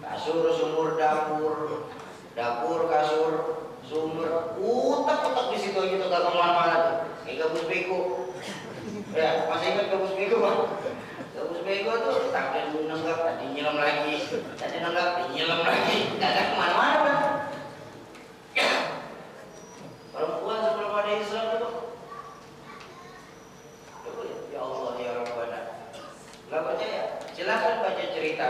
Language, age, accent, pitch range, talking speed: Indonesian, 30-49, native, 170-215 Hz, 120 wpm